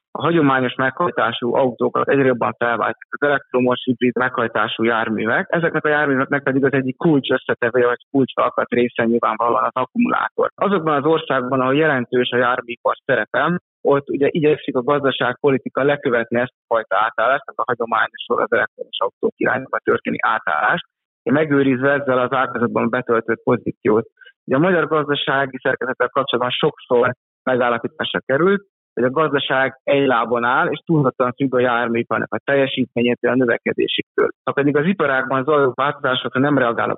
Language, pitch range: Hungarian, 120-145 Hz